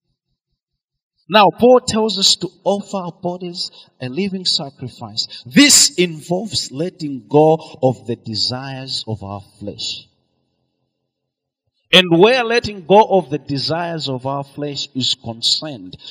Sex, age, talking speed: male, 40-59, 125 wpm